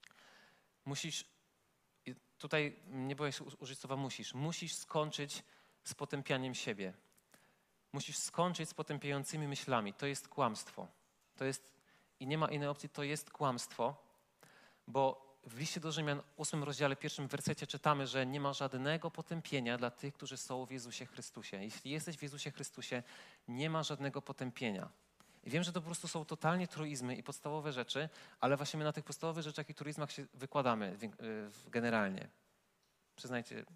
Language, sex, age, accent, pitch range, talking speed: Polish, male, 40-59, native, 130-150 Hz, 155 wpm